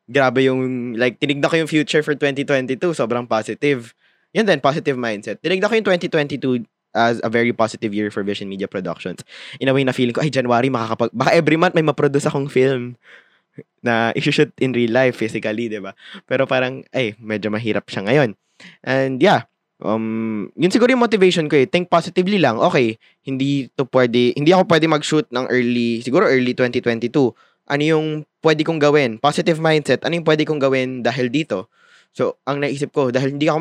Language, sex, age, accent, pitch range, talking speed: Filipino, male, 20-39, native, 120-150 Hz, 185 wpm